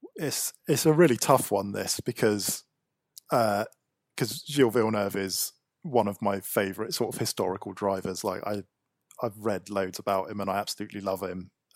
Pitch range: 100-115 Hz